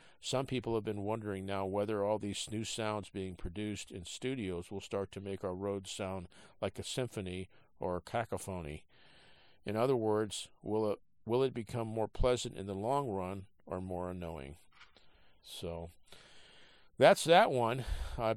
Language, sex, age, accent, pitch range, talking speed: English, male, 50-69, American, 95-110 Hz, 160 wpm